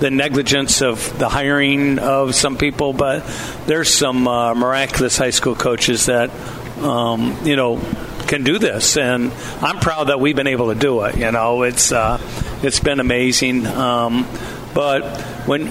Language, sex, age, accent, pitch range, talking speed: English, male, 60-79, American, 120-140 Hz, 165 wpm